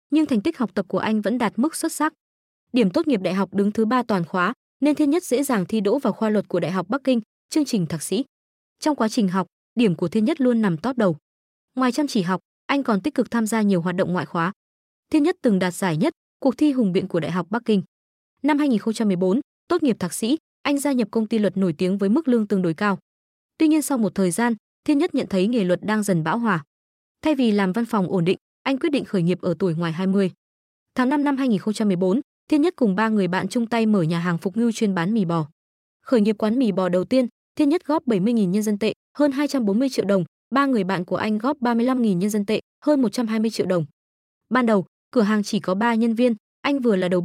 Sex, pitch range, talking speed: female, 190-255 Hz, 255 wpm